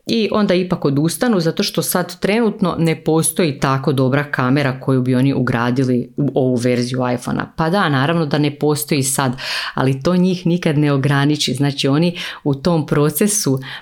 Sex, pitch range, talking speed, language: female, 130-165 Hz, 170 wpm, Croatian